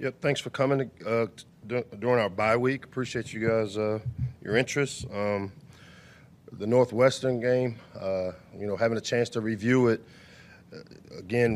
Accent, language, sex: American, English, male